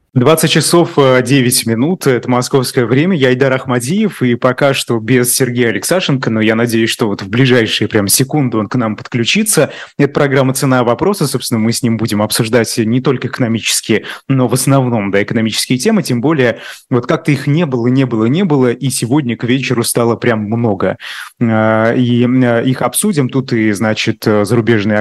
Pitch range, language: 115-140 Hz, Russian